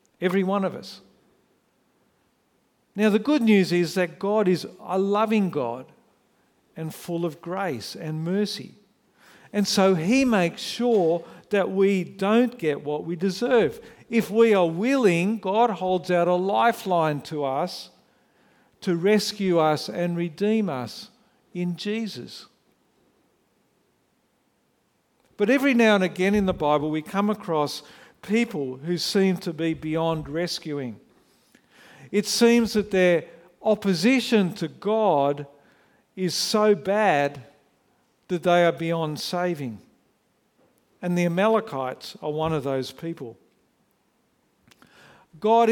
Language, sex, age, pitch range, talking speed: English, male, 50-69, 160-205 Hz, 125 wpm